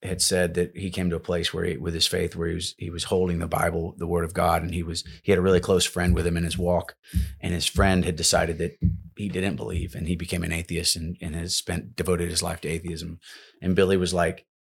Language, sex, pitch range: English, male, 85-90 Hz